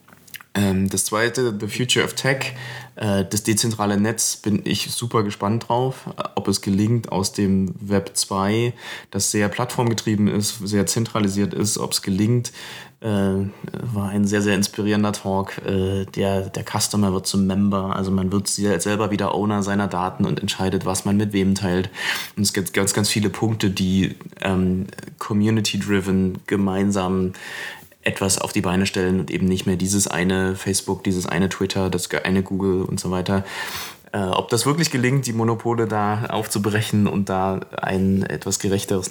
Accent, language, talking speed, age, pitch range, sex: German, German, 160 wpm, 20-39, 95-105 Hz, male